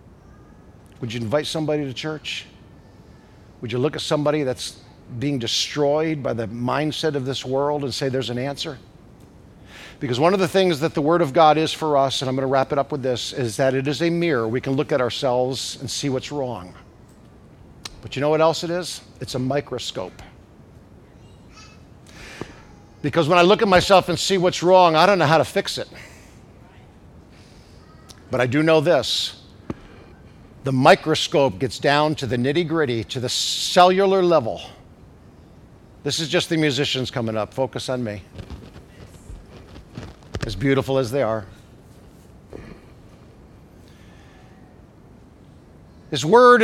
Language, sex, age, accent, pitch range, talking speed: English, male, 50-69, American, 120-155 Hz, 155 wpm